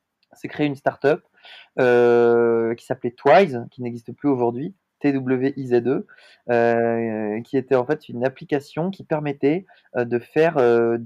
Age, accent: 20-39, French